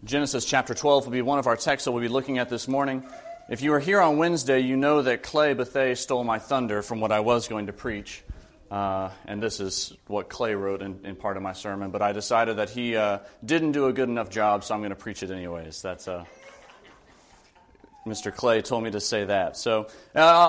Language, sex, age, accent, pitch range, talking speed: English, male, 30-49, American, 105-145 Hz, 235 wpm